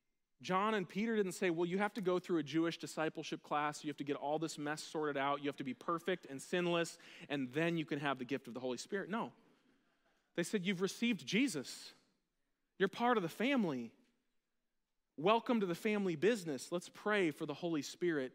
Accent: American